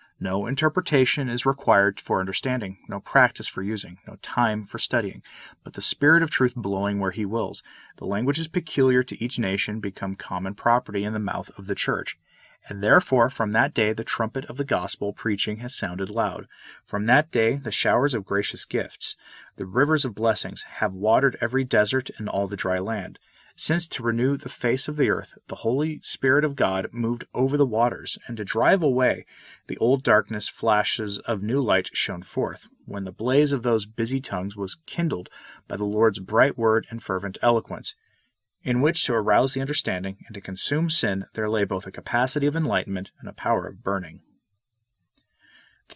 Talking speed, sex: 185 wpm, male